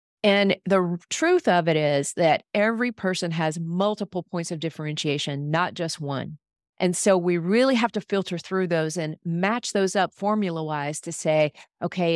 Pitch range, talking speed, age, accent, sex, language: 160-200 Hz, 175 wpm, 40-59, American, female, English